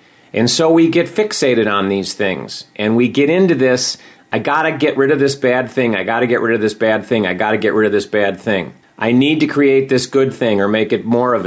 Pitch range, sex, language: 110-140 Hz, male, English